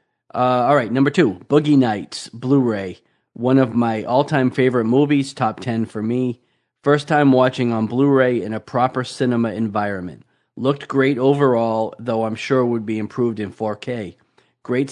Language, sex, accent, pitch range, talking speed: English, male, American, 110-135 Hz, 160 wpm